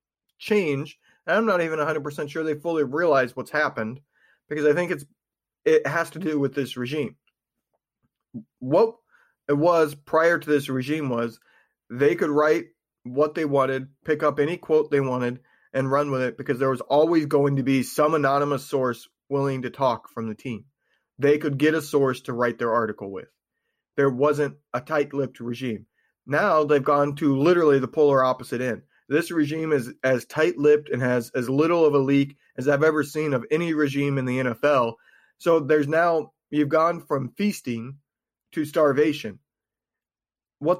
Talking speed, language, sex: 175 wpm, English, male